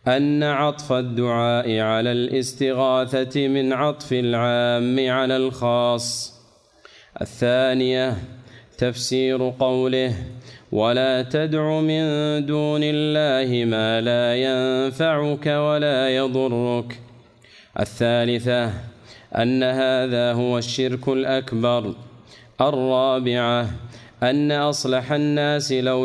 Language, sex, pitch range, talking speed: Arabic, male, 120-130 Hz, 80 wpm